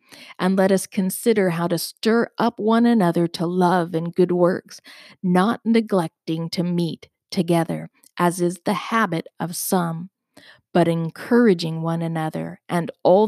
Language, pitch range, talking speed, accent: English, 165-210 Hz, 145 wpm, American